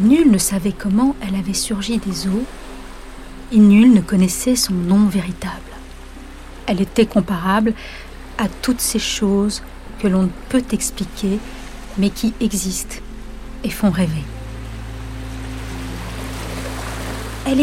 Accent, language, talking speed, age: French, French, 120 wpm, 40-59